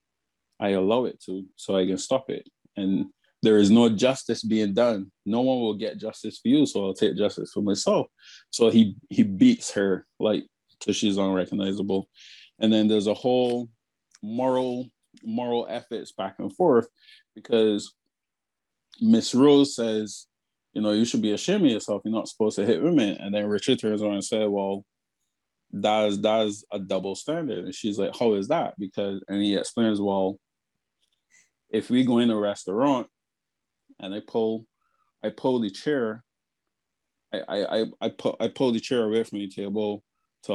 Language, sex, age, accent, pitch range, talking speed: English, male, 20-39, American, 100-115 Hz, 175 wpm